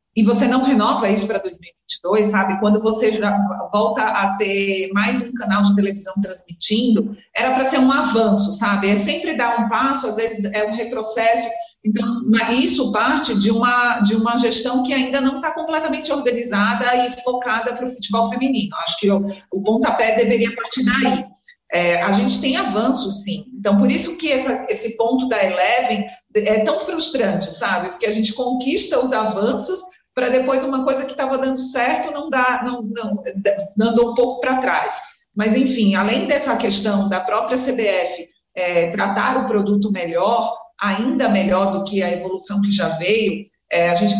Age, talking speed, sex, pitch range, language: 40-59, 170 wpm, female, 200-245 Hz, Portuguese